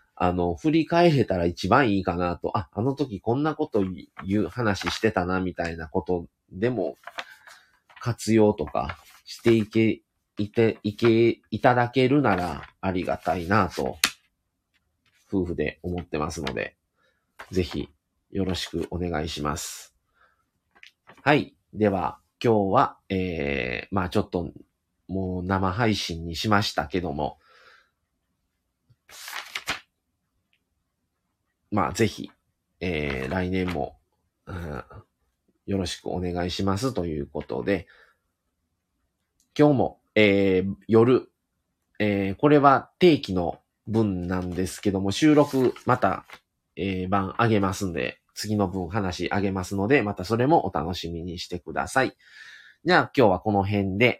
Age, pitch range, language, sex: 30-49, 85-105 Hz, Japanese, male